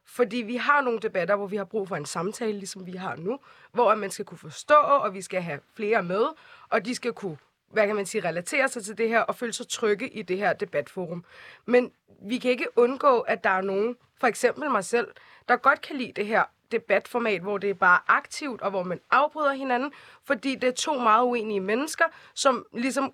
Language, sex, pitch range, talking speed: Danish, female, 195-250 Hz, 225 wpm